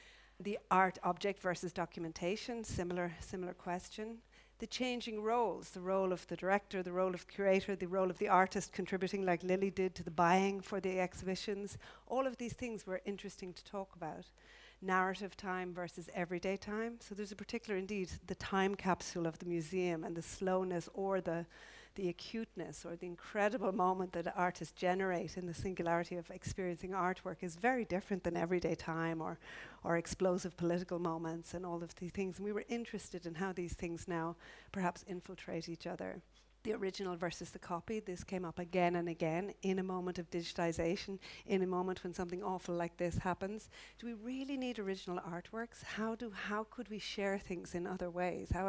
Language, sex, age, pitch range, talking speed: English, female, 50-69, 175-200 Hz, 185 wpm